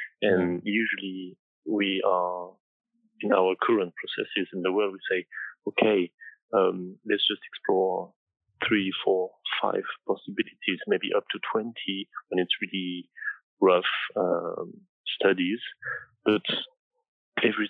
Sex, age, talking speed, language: male, 30-49, 115 wpm, English